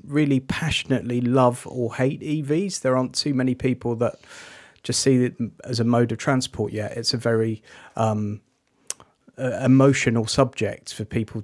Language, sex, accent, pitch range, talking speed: English, male, British, 115-135 Hz, 155 wpm